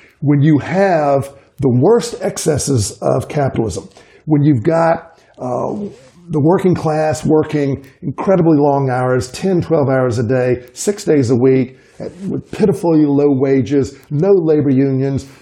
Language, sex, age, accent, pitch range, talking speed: English, male, 50-69, American, 130-160 Hz, 135 wpm